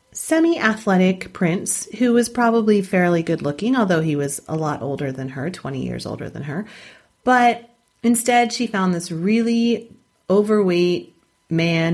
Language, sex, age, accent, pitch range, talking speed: English, female, 40-59, American, 150-205 Hz, 150 wpm